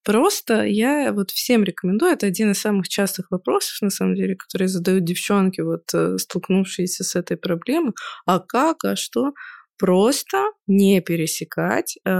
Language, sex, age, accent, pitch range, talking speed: Russian, female, 20-39, native, 175-225 Hz, 145 wpm